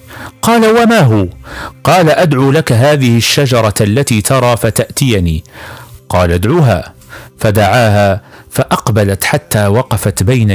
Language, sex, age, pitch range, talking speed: Arabic, male, 50-69, 100-140 Hz, 100 wpm